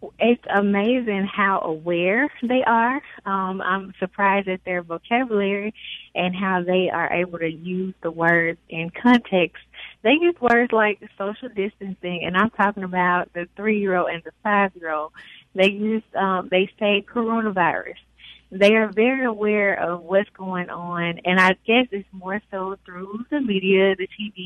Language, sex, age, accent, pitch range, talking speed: English, female, 20-39, American, 175-205 Hz, 155 wpm